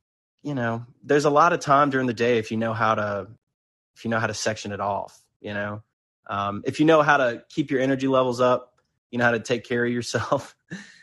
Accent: American